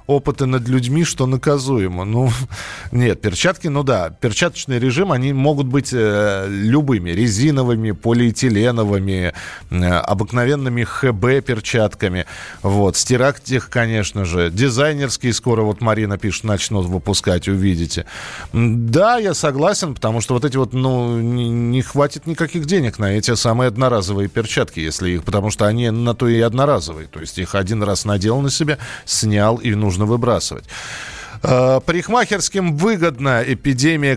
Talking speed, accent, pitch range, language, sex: 135 wpm, native, 105-145 Hz, Russian, male